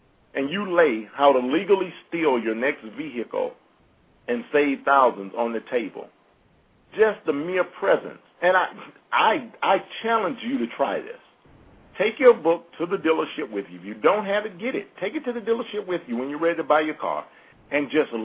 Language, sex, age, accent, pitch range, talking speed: English, male, 50-69, American, 140-230 Hz, 195 wpm